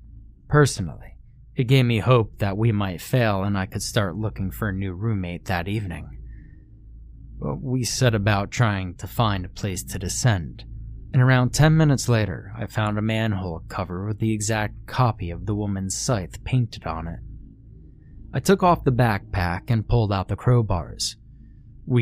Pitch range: 95-120 Hz